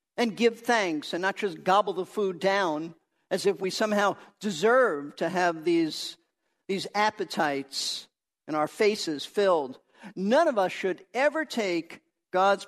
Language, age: English, 50-69